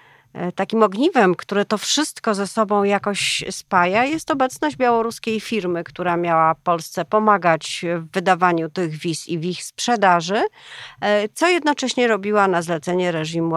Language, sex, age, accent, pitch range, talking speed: Polish, female, 40-59, native, 170-225 Hz, 135 wpm